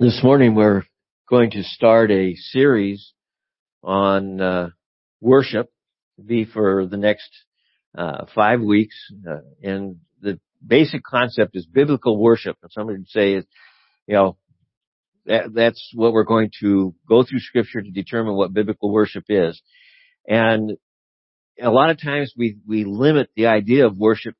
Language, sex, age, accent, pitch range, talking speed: English, male, 50-69, American, 100-130 Hz, 150 wpm